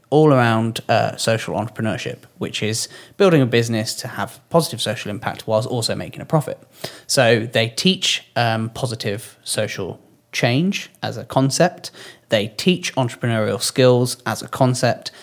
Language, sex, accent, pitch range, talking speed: English, male, British, 110-135 Hz, 145 wpm